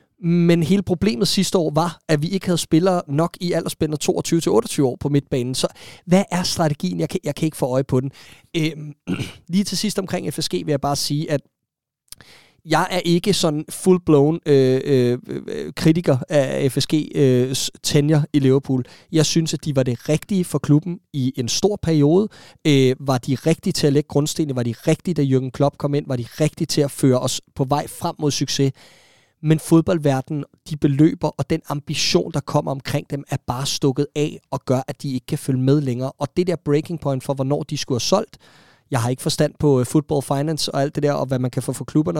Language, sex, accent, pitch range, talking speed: Danish, male, native, 135-165 Hz, 210 wpm